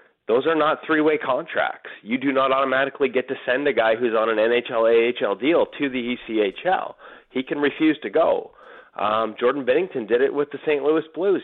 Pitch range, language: 120-190 Hz, English